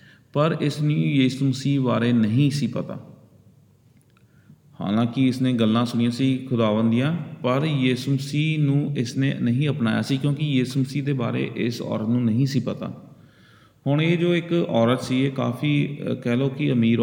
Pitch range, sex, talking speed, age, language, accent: 115-140 Hz, male, 150 wpm, 30-49, English, Indian